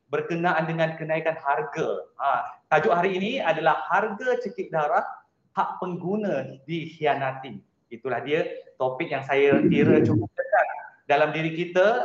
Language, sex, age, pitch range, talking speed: Malay, male, 30-49, 155-185 Hz, 130 wpm